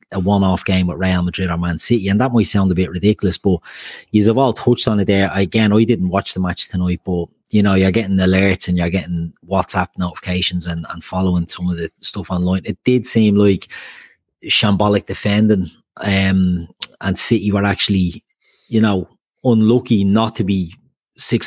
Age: 30-49